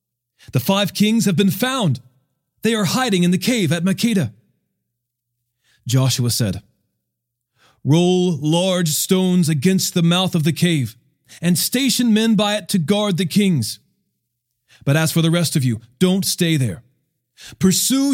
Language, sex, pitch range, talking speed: English, male, 125-190 Hz, 150 wpm